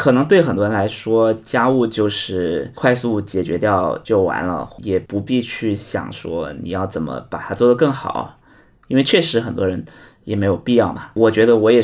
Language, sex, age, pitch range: Chinese, male, 20-39, 105-135 Hz